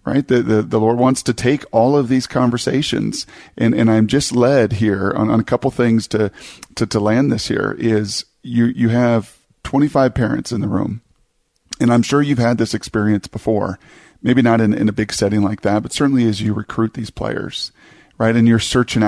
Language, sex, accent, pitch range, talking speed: English, male, American, 105-120 Hz, 210 wpm